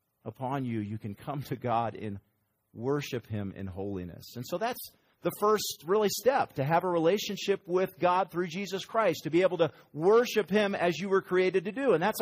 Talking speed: 205 wpm